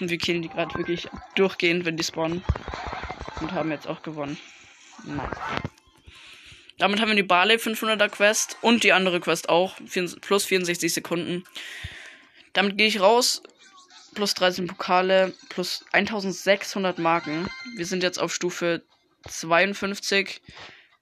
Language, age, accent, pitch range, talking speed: German, 20-39, German, 165-190 Hz, 130 wpm